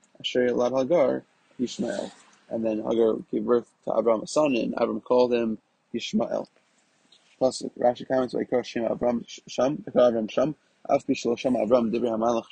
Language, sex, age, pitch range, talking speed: English, male, 20-39, 110-125 Hz, 135 wpm